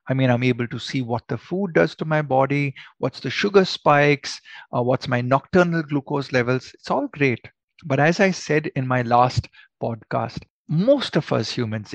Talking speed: 190 wpm